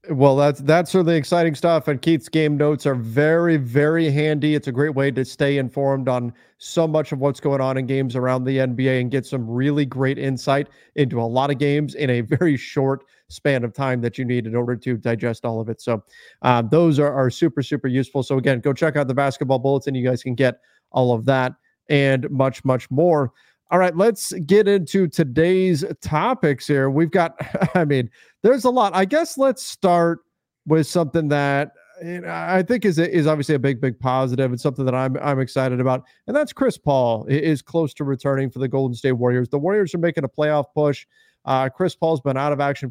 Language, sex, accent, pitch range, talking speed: English, male, American, 130-165 Hz, 220 wpm